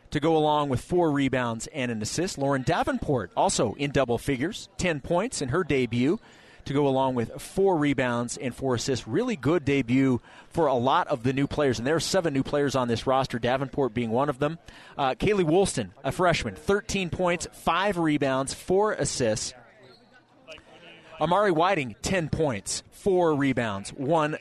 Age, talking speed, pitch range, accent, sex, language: 30-49, 175 wpm, 125-160 Hz, American, male, English